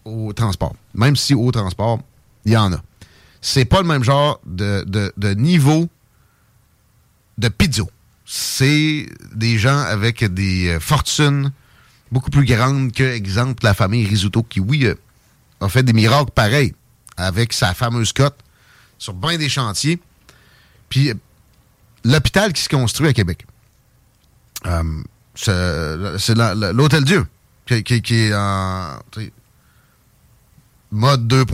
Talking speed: 130 wpm